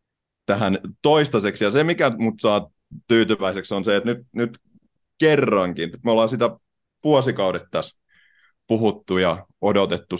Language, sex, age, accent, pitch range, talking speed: Finnish, male, 30-49, native, 95-115 Hz, 135 wpm